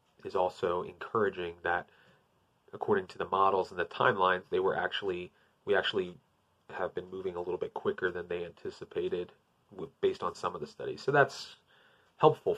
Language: English